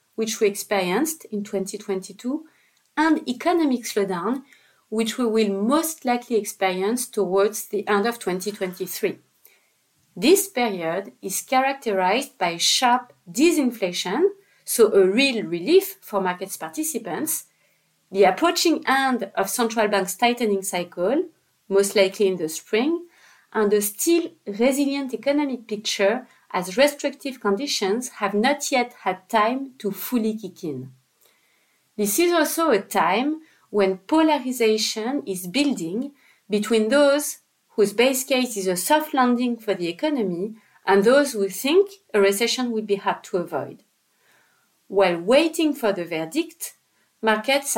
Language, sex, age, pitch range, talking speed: English, female, 30-49, 200-280 Hz, 130 wpm